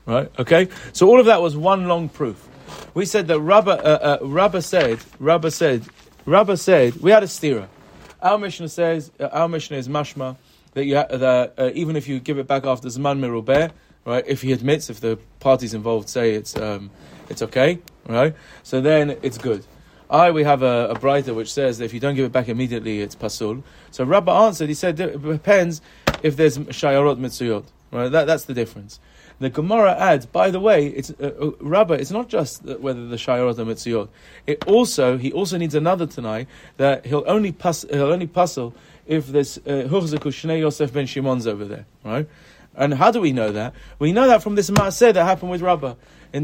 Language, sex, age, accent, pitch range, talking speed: English, male, 30-49, British, 125-170 Hz, 205 wpm